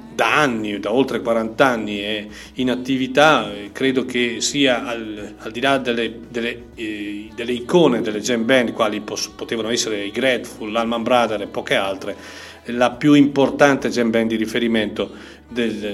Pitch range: 115-140 Hz